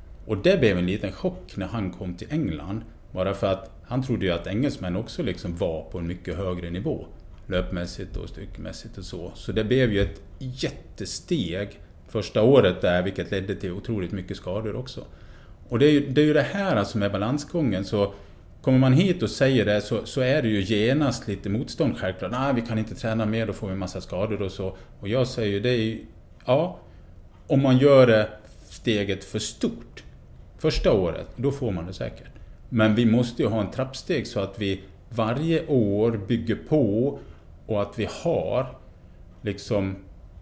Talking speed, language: 190 wpm, Swedish